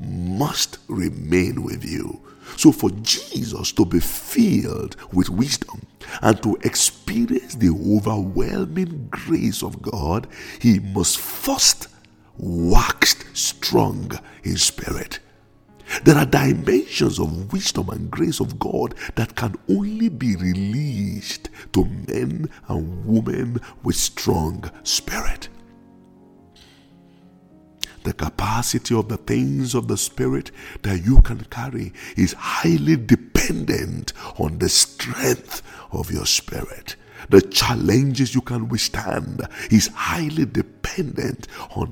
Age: 60-79